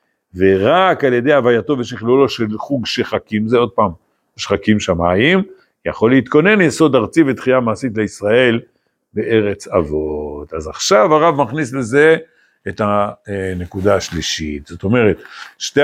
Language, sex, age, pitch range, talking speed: Hebrew, male, 60-79, 110-150 Hz, 125 wpm